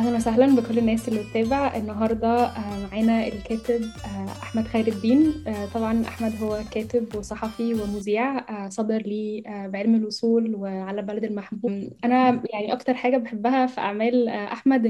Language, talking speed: Arabic, 135 wpm